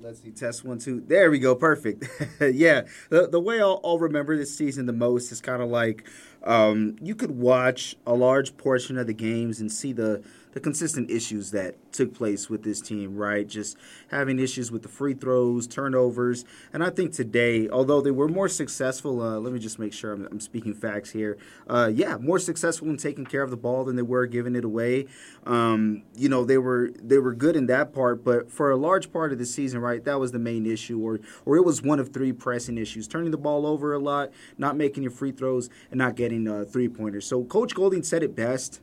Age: 30-49